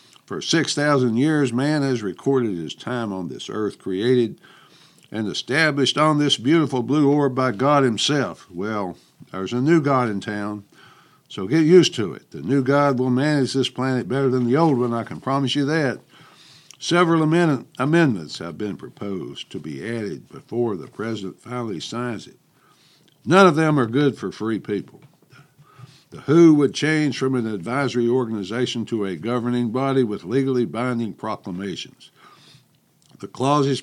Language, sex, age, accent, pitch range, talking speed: English, male, 60-79, American, 115-140 Hz, 160 wpm